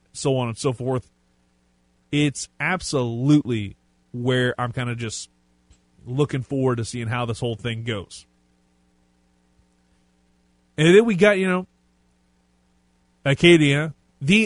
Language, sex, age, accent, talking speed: English, male, 30-49, American, 120 wpm